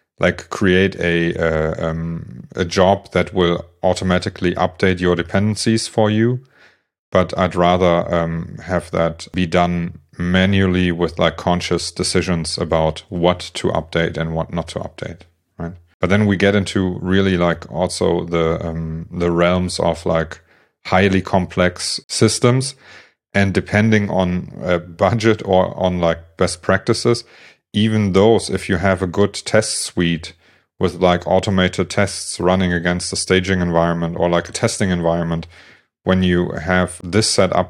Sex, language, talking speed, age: male, English, 150 wpm, 30-49